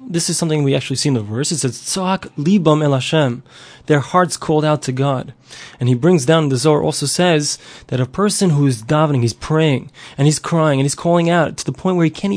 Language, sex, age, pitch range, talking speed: English, male, 20-39, 135-170 Hz, 225 wpm